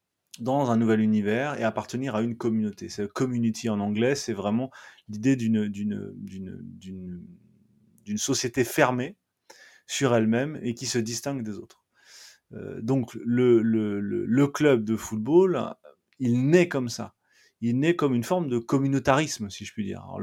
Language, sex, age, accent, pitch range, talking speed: French, male, 30-49, French, 110-130 Hz, 170 wpm